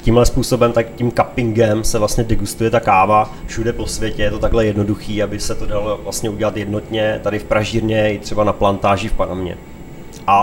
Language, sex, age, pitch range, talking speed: Czech, male, 20-39, 105-115 Hz, 195 wpm